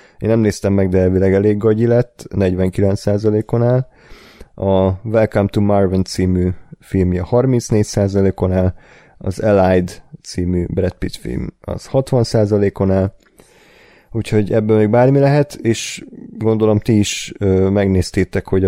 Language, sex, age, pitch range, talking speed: Hungarian, male, 30-49, 95-110 Hz, 130 wpm